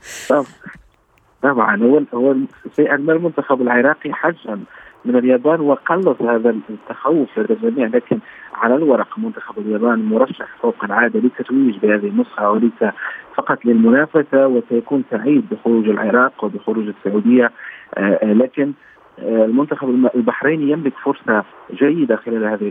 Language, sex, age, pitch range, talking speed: Arabic, male, 50-69, 115-135 Hz, 115 wpm